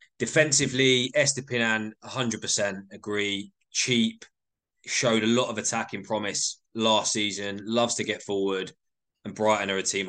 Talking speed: 130 wpm